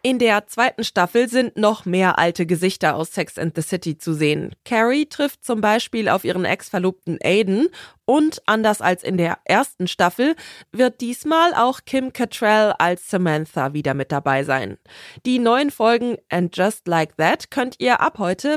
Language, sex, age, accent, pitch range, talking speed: German, female, 20-39, German, 180-255 Hz, 170 wpm